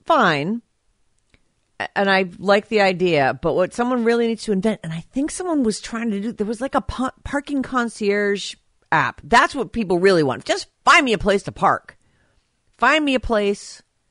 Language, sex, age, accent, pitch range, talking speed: English, female, 50-69, American, 140-200 Hz, 185 wpm